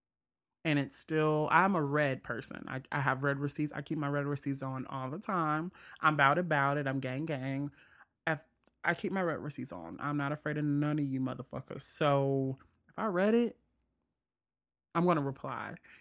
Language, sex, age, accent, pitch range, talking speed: English, male, 20-39, American, 140-200 Hz, 195 wpm